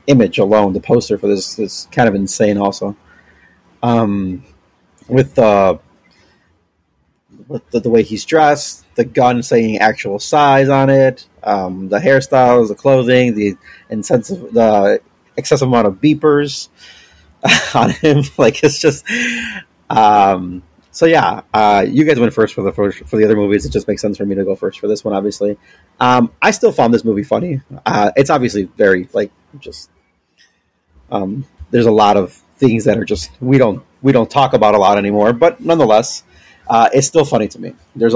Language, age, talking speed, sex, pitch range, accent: English, 30-49, 175 wpm, male, 100-135 Hz, American